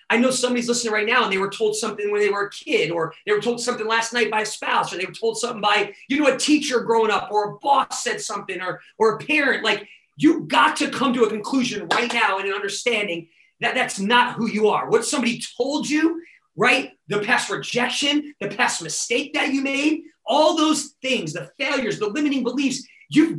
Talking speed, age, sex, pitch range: 230 wpm, 30-49, male, 215-285 Hz